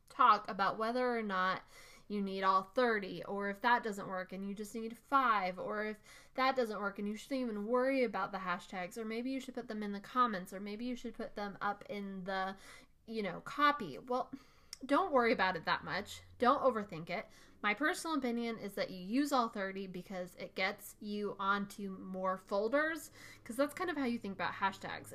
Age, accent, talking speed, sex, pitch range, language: 20-39, American, 210 wpm, female, 190-245 Hz, English